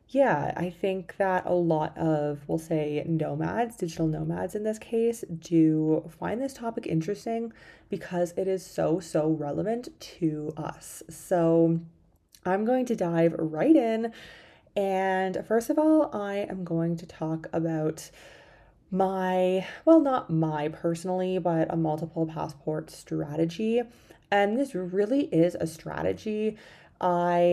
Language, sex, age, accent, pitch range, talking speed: English, female, 20-39, American, 160-195 Hz, 135 wpm